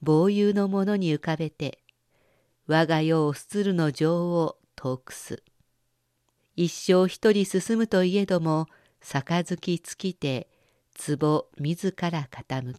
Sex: female